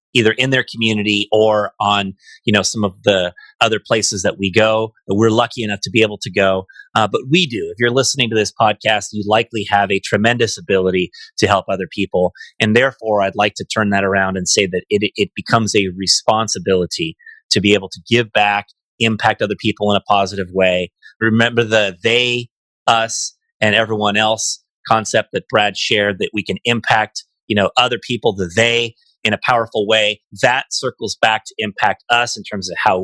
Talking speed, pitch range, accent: 195 wpm, 100-120 Hz, American